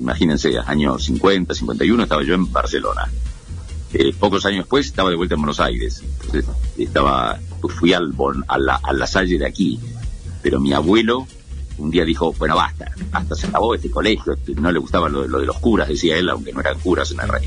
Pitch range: 70-85 Hz